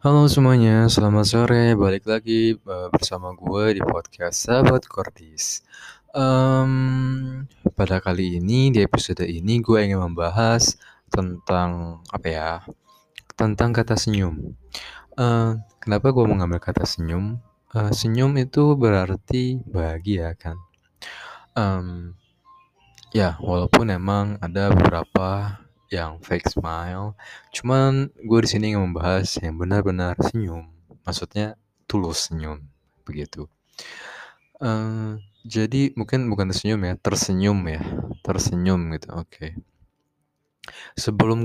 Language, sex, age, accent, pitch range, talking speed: Indonesian, male, 20-39, native, 85-110 Hz, 105 wpm